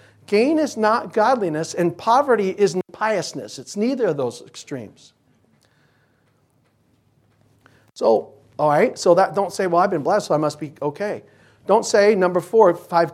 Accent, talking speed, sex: American, 155 wpm, male